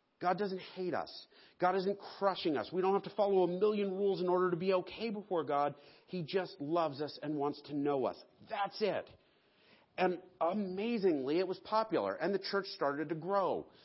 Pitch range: 140-190 Hz